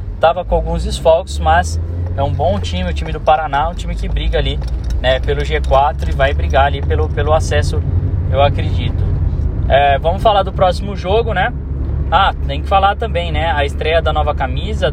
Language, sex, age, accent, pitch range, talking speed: Portuguese, male, 10-29, Brazilian, 75-95 Hz, 195 wpm